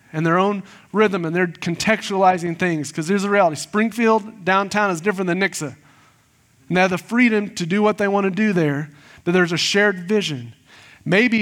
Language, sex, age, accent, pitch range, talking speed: English, male, 30-49, American, 140-185 Hz, 195 wpm